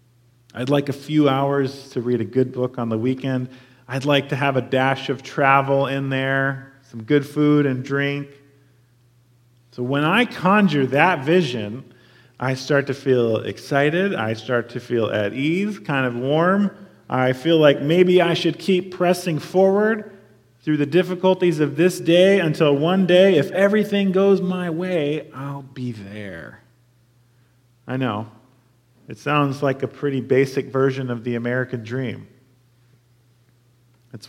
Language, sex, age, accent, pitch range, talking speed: English, male, 40-59, American, 125-165 Hz, 155 wpm